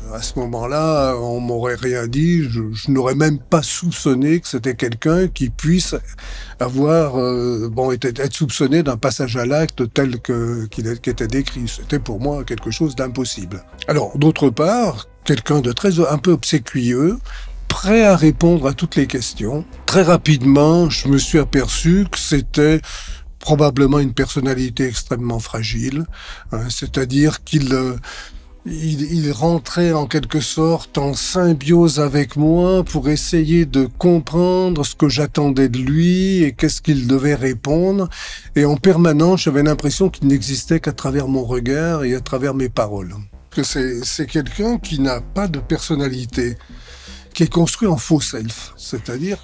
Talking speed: 155 wpm